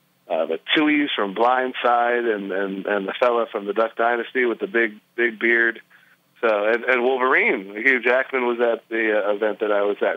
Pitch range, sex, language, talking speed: 110-130 Hz, male, English, 200 wpm